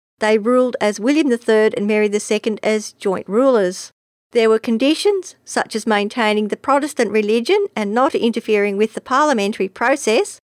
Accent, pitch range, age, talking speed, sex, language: Australian, 210-260 Hz, 50-69, 155 wpm, female, English